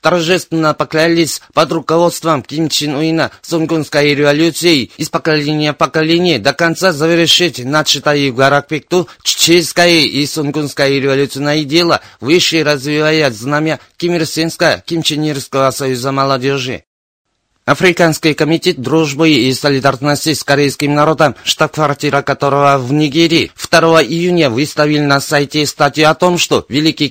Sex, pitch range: male, 140-160 Hz